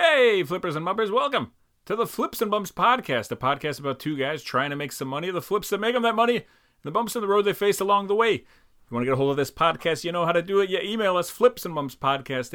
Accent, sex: American, male